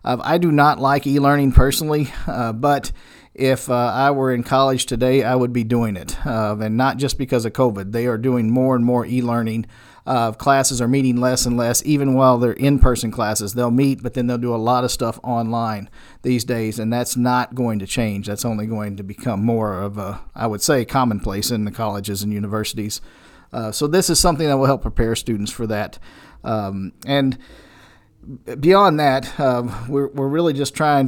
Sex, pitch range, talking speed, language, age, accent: male, 115-135 Hz, 200 wpm, English, 50-69, American